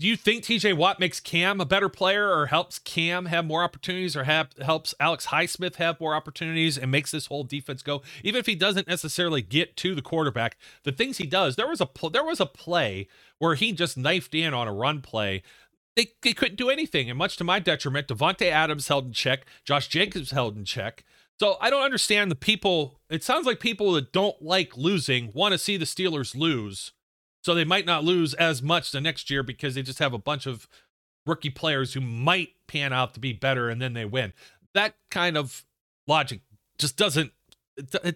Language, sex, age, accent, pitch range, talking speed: English, male, 40-59, American, 135-180 Hz, 210 wpm